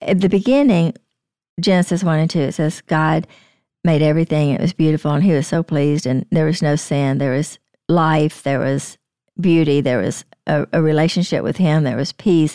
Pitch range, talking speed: 155-190 Hz, 195 wpm